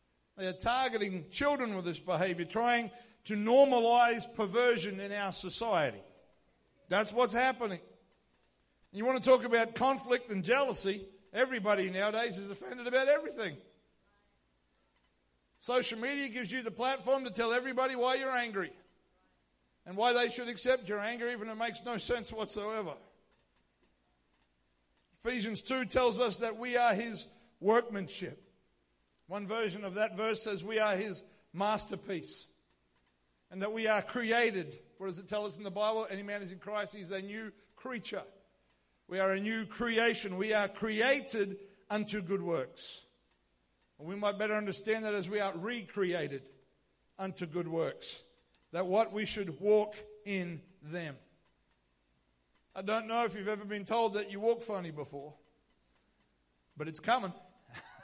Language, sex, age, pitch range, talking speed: English, male, 60-79, 175-230 Hz, 150 wpm